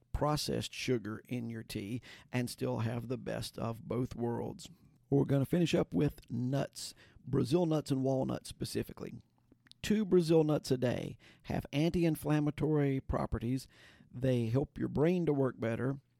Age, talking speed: 50-69, 150 wpm